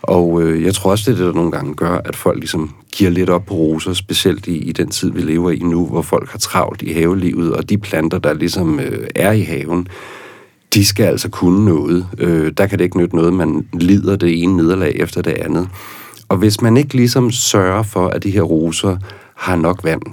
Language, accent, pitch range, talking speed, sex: Danish, native, 85-100 Hz, 220 wpm, male